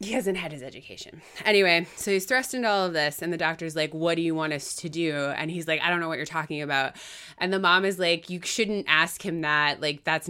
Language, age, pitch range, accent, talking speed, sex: English, 20-39, 150-190 Hz, American, 270 wpm, female